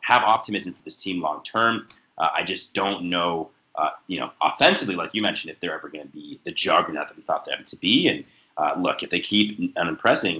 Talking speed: 230 wpm